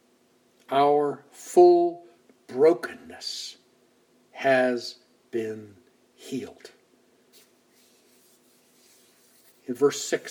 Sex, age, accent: male, 60-79, American